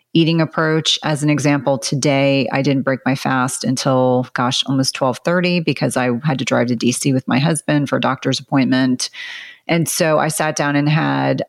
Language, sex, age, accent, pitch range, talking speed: English, female, 30-49, American, 135-155 Hz, 190 wpm